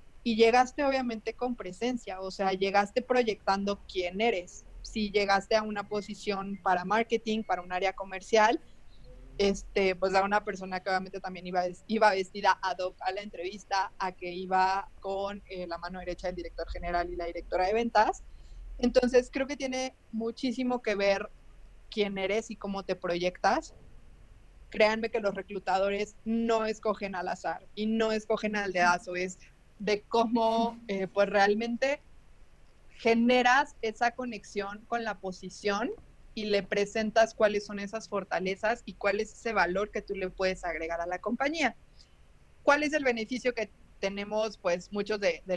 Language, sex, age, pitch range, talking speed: Spanish, female, 20-39, 190-225 Hz, 160 wpm